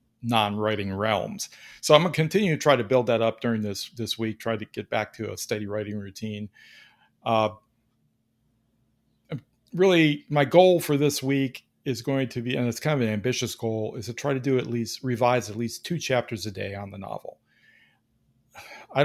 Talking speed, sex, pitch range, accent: 195 wpm, male, 115-135 Hz, American